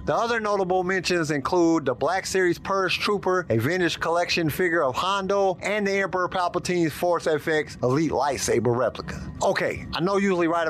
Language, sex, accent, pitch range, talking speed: English, male, American, 145-180 Hz, 170 wpm